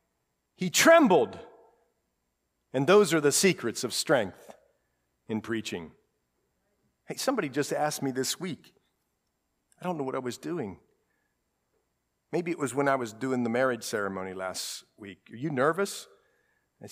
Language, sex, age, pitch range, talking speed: English, male, 50-69, 110-185 Hz, 145 wpm